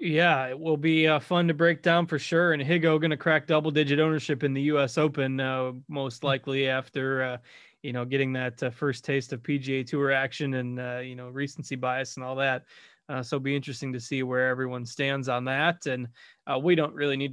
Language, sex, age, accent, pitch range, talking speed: English, male, 20-39, American, 130-145 Hz, 225 wpm